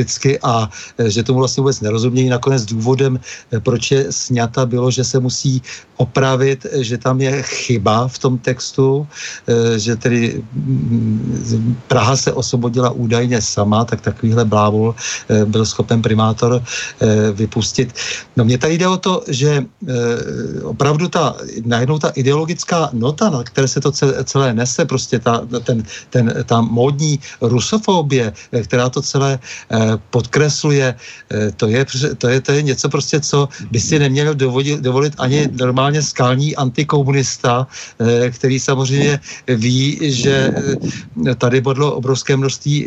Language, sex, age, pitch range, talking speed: Czech, male, 50-69, 120-140 Hz, 125 wpm